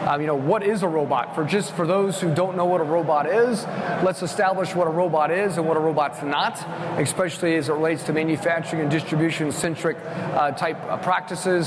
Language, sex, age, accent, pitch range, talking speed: English, male, 30-49, American, 155-185 Hz, 210 wpm